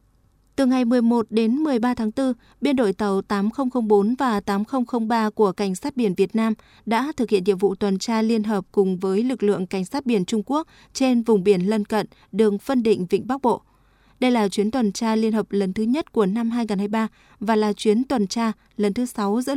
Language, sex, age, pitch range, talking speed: Vietnamese, female, 20-39, 205-245 Hz, 215 wpm